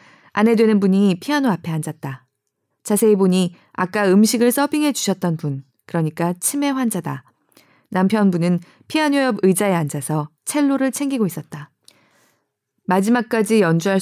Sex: female